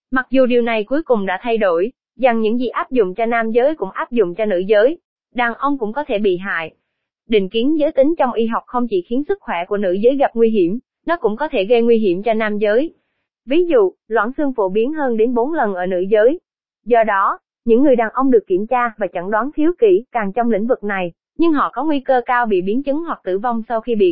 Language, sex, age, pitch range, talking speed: Vietnamese, female, 20-39, 205-275 Hz, 260 wpm